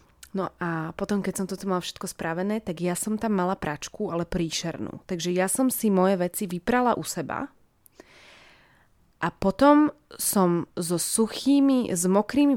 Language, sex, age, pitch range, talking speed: Slovak, female, 20-39, 175-215 Hz, 160 wpm